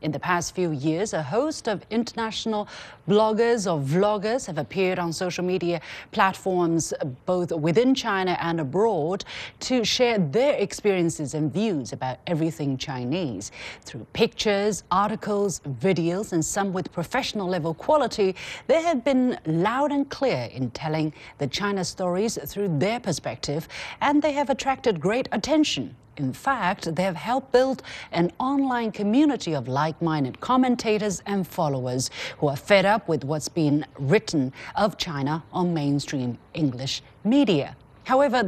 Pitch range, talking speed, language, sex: 150-215 Hz, 140 wpm, English, female